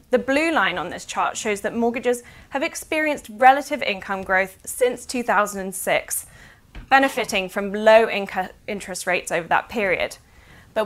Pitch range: 190-240 Hz